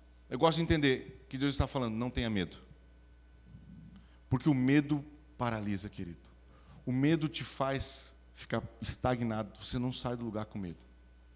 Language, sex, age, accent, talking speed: Portuguese, male, 40-59, Brazilian, 155 wpm